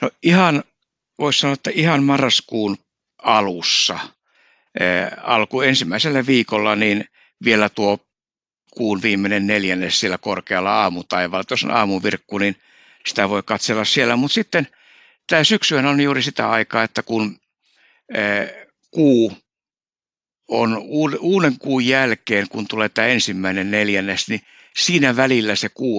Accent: native